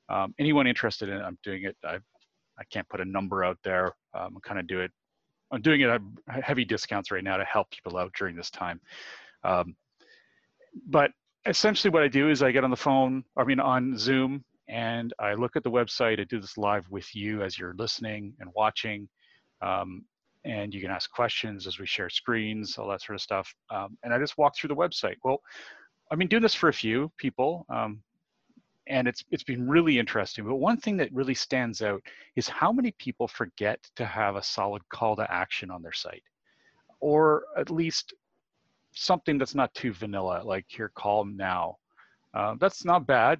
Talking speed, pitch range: 205 wpm, 105-150 Hz